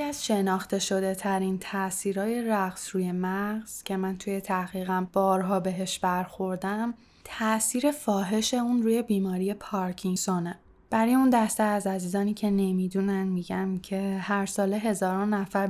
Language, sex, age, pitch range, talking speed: Persian, female, 10-29, 190-225 Hz, 130 wpm